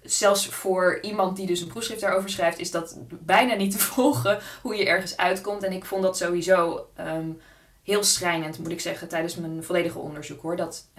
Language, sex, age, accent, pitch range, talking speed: Dutch, female, 20-39, Dutch, 165-195 Hz, 195 wpm